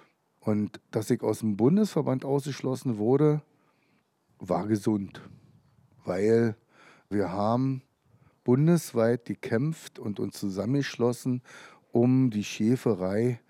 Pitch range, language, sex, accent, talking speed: 105-135 Hz, German, male, German, 95 wpm